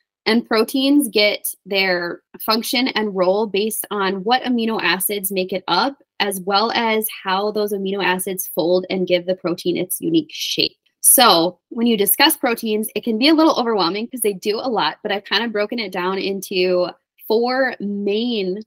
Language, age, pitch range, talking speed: English, 20-39, 185-230 Hz, 180 wpm